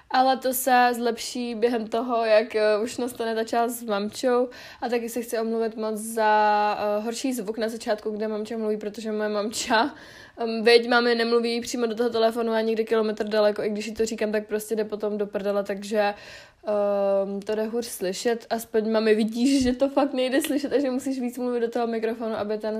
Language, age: Czech, 20-39